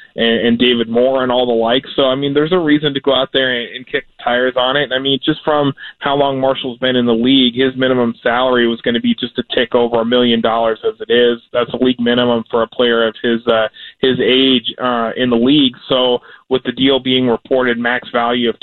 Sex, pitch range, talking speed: male, 120-140 Hz, 240 wpm